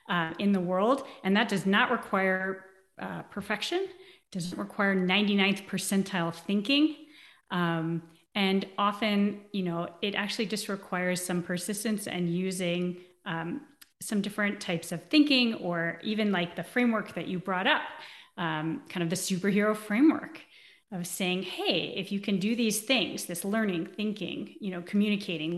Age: 30-49